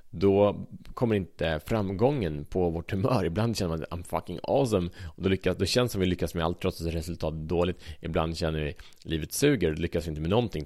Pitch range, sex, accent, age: 80-110 Hz, male, Norwegian, 30-49